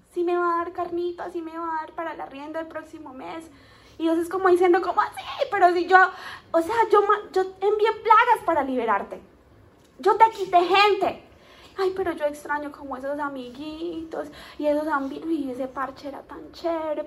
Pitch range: 270-350 Hz